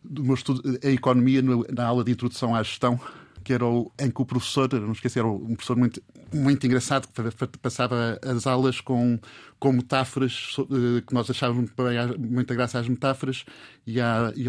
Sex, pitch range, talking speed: male, 120-135 Hz, 180 wpm